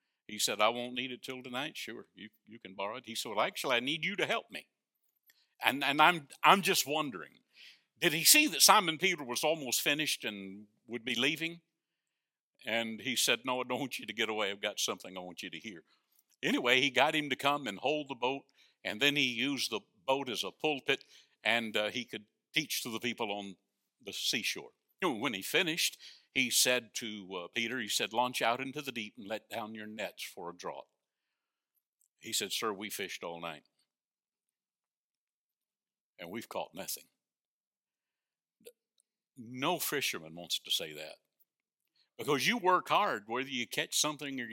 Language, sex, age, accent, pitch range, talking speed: English, male, 60-79, American, 115-155 Hz, 190 wpm